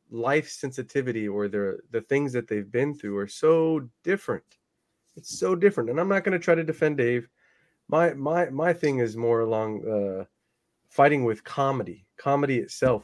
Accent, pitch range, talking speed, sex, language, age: American, 115-145 Hz, 175 wpm, male, English, 30-49